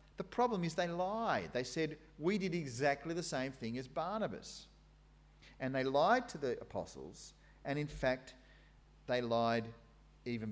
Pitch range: 115-175 Hz